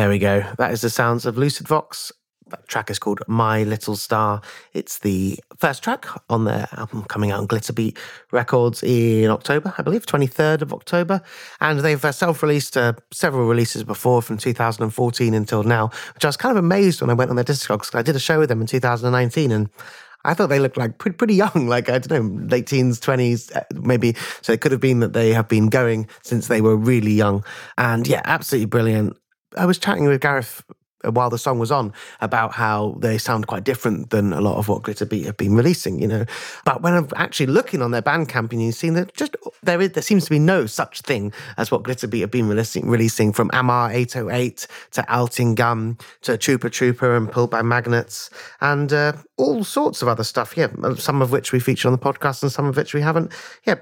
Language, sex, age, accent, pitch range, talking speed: English, male, 30-49, British, 110-145 Hz, 215 wpm